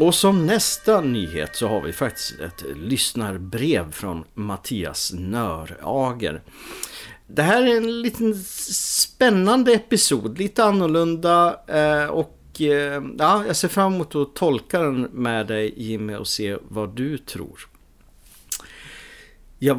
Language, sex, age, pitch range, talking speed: English, male, 50-69, 100-150 Hz, 125 wpm